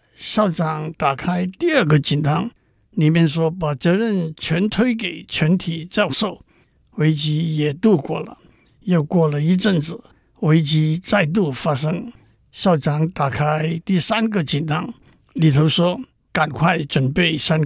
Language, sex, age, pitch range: Chinese, male, 60-79, 155-190 Hz